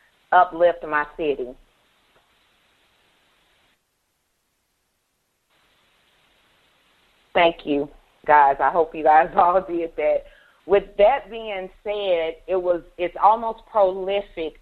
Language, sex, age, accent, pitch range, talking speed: English, female, 40-59, American, 160-205 Hz, 90 wpm